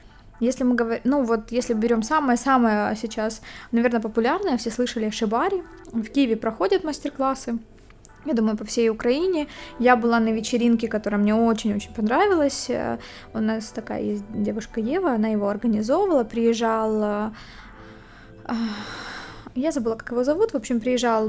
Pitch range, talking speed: 220-265 Hz, 140 wpm